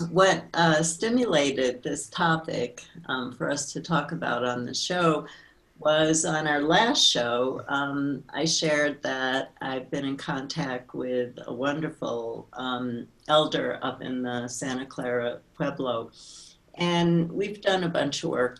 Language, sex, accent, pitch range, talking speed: English, female, American, 130-160 Hz, 145 wpm